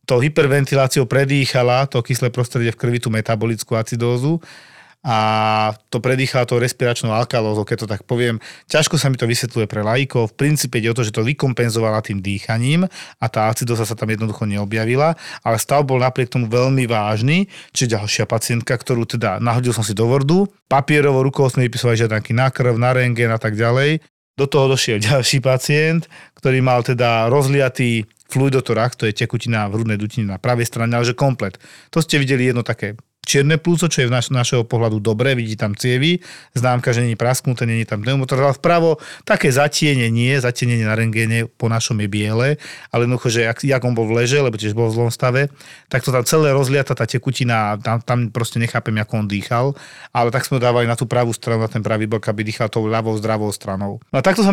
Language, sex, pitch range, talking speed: Slovak, male, 115-140 Hz, 200 wpm